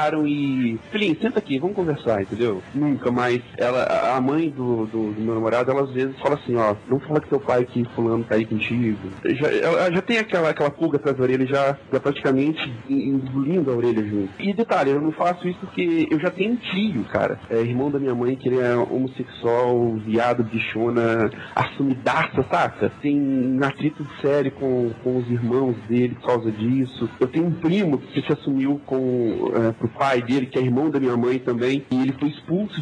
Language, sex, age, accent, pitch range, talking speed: Portuguese, male, 40-59, Brazilian, 125-160 Hz, 200 wpm